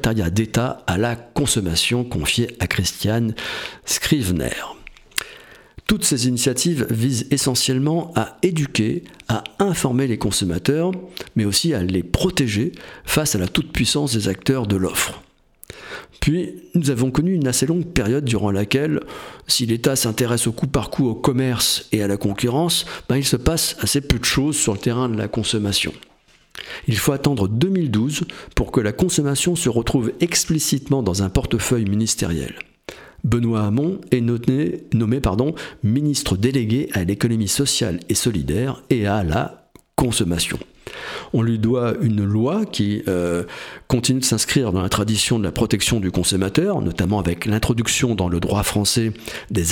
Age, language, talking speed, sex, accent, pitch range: 50-69, French, 150 wpm, male, French, 105-140 Hz